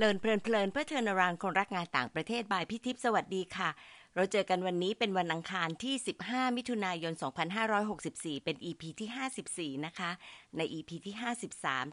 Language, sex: Thai, female